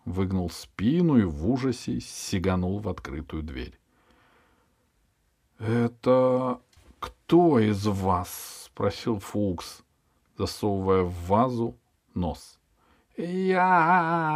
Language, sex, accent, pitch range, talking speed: Russian, male, native, 95-145 Hz, 85 wpm